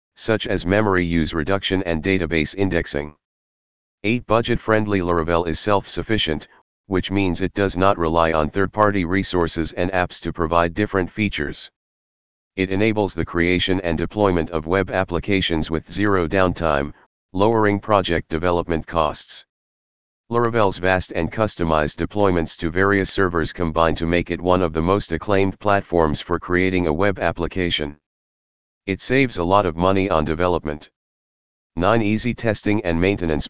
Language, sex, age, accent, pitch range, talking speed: English, male, 40-59, American, 85-100 Hz, 145 wpm